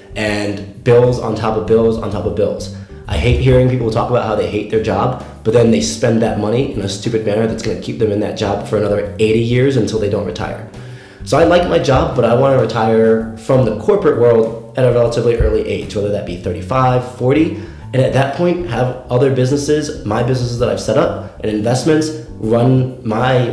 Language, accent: English, American